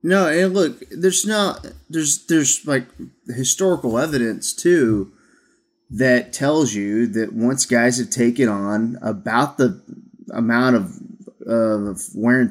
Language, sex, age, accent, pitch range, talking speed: English, male, 30-49, American, 120-160 Hz, 130 wpm